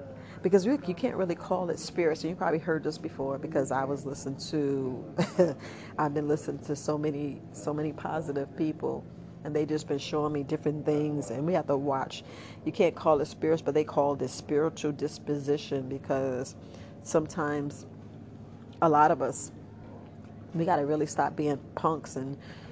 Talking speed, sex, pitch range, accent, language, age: 175 wpm, female, 140-160 Hz, American, English, 40-59